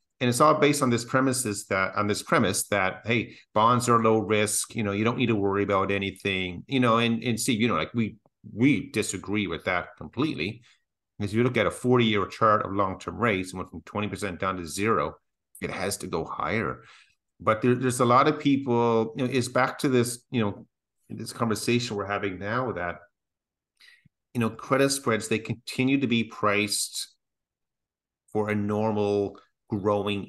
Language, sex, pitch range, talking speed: English, male, 100-120 Hz, 195 wpm